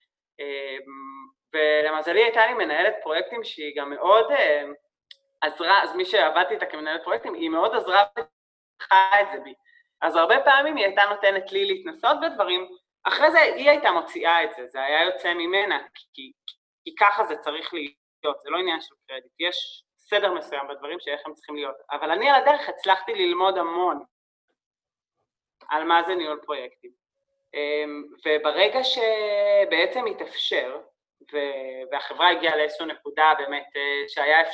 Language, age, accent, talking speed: English, 20-39, Israeli, 130 wpm